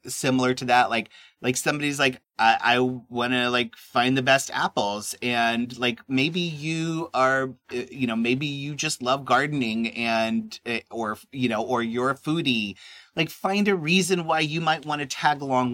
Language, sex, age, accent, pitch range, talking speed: English, male, 30-49, American, 115-140 Hz, 175 wpm